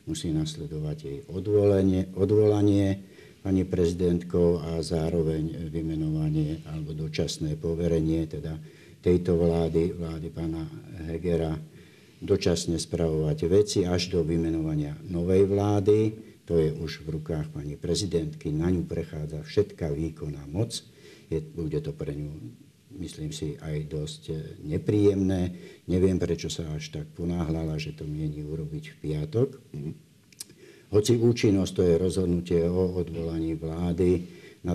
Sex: male